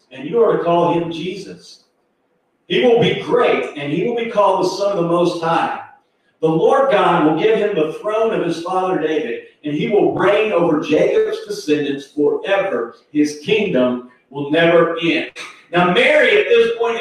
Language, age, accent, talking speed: English, 40-59, American, 185 wpm